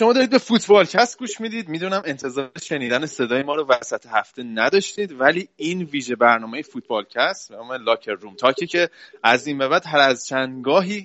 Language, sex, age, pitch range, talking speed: Persian, male, 30-49, 115-160 Hz, 185 wpm